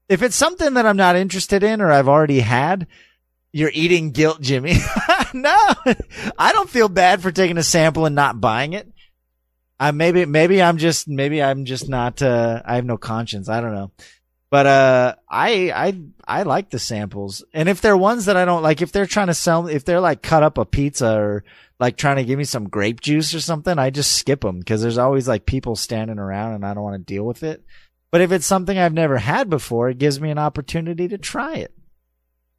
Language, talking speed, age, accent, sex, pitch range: English, 220 wpm, 30-49, American, male, 115-175 Hz